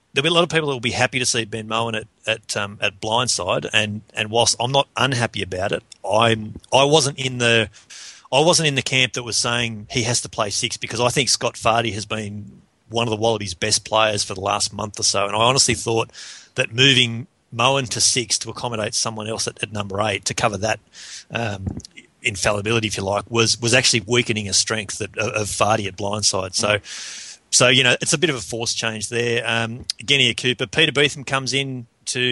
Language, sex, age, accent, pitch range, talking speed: English, male, 30-49, Australian, 110-125 Hz, 225 wpm